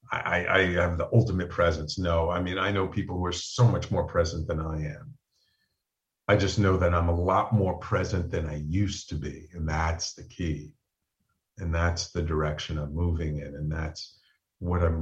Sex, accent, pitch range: male, American, 85-100 Hz